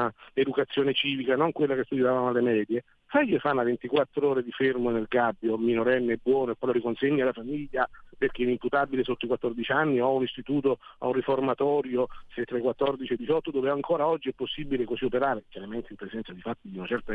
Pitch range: 115-140 Hz